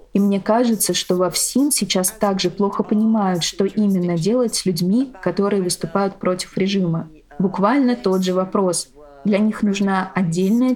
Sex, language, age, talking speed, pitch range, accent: female, Russian, 20-39, 150 wpm, 185-215 Hz, native